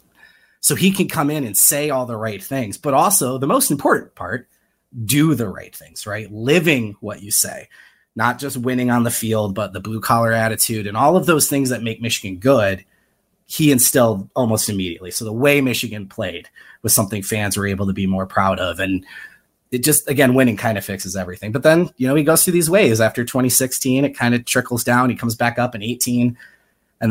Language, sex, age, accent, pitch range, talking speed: English, male, 30-49, American, 100-130 Hz, 215 wpm